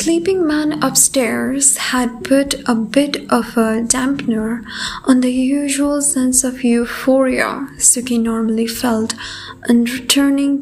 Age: 20-39